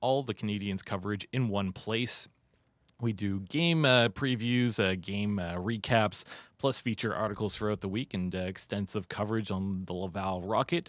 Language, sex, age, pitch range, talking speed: English, male, 30-49, 100-120 Hz, 165 wpm